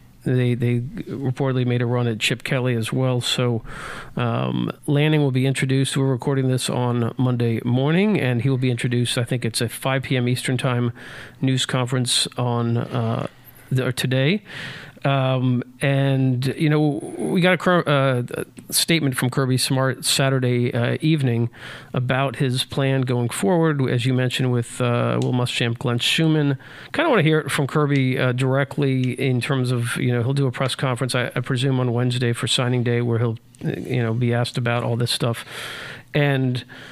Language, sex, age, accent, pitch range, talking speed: English, male, 40-59, American, 120-140 Hz, 180 wpm